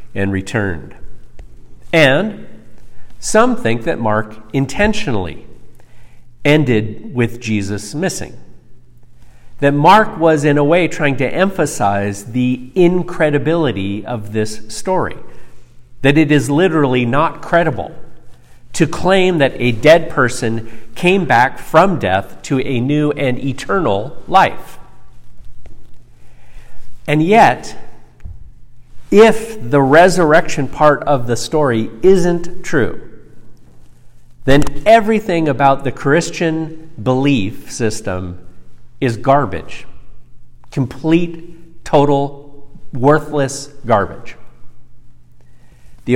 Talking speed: 95 wpm